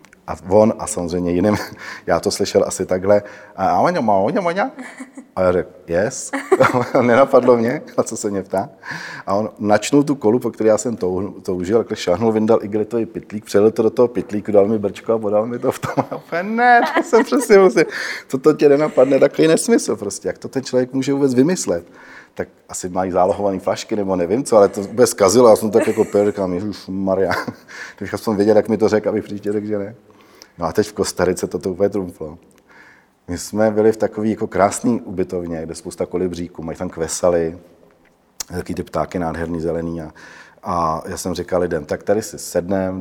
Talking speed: 195 wpm